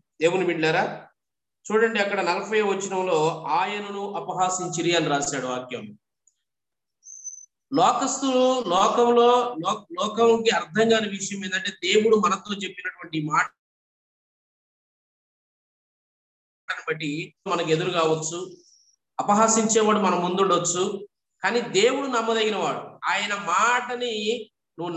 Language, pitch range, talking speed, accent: Telugu, 175-230 Hz, 85 wpm, native